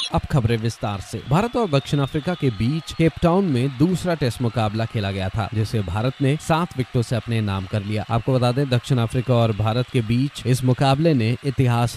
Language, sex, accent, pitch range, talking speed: Hindi, male, native, 115-145 Hz, 210 wpm